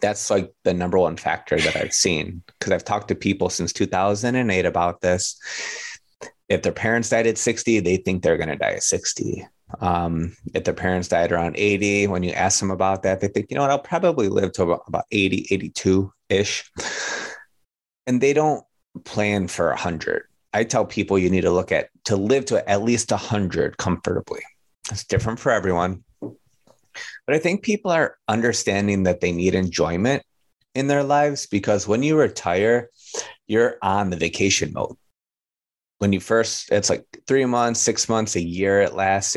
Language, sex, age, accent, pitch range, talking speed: English, male, 30-49, American, 95-120 Hz, 185 wpm